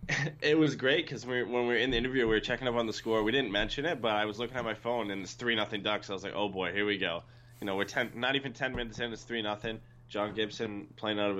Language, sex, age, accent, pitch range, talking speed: English, male, 20-39, American, 100-125 Hz, 315 wpm